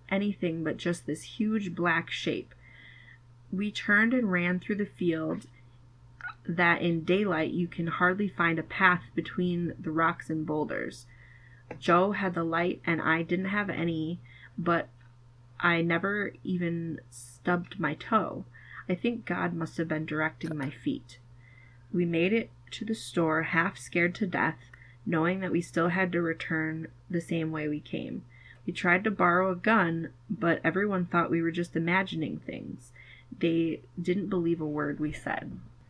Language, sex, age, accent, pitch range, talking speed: English, female, 20-39, American, 145-180 Hz, 160 wpm